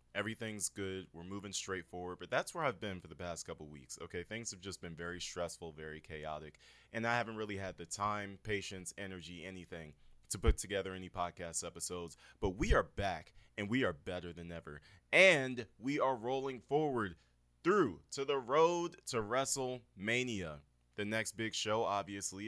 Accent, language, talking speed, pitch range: American, English, 180 wpm, 85-110 Hz